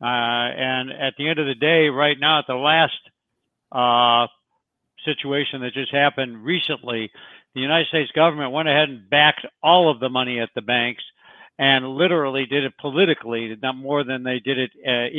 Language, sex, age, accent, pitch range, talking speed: English, male, 60-79, American, 130-160 Hz, 180 wpm